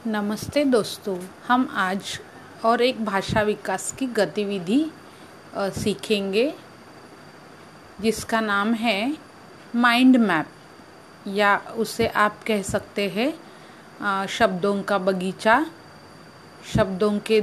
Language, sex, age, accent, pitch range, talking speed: Hindi, female, 30-49, native, 210-260 Hz, 95 wpm